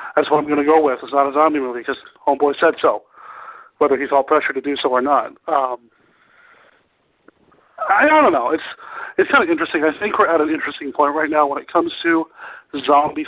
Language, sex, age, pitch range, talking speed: English, male, 40-59, 140-215 Hz, 215 wpm